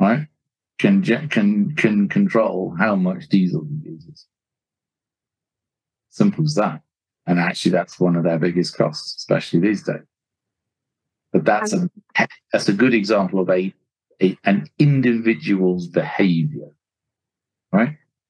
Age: 40-59